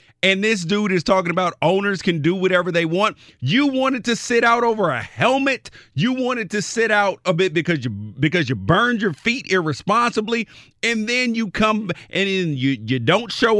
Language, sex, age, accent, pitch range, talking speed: English, male, 40-59, American, 155-215 Hz, 200 wpm